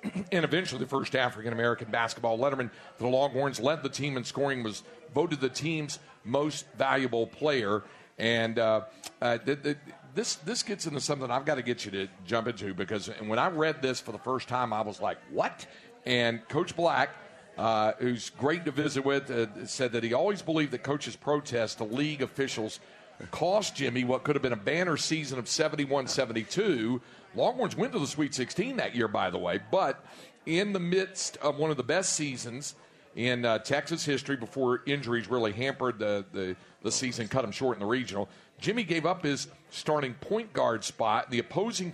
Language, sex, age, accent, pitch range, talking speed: English, male, 50-69, American, 120-150 Hz, 195 wpm